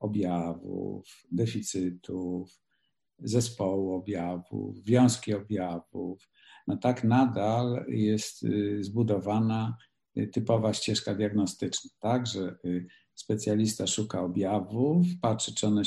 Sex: male